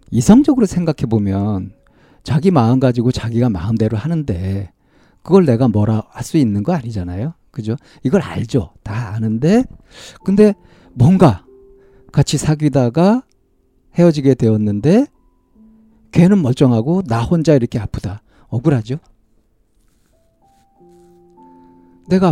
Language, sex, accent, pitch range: Korean, male, native, 110-160 Hz